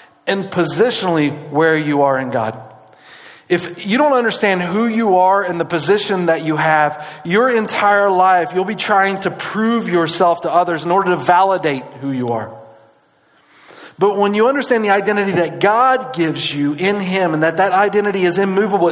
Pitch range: 180-225 Hz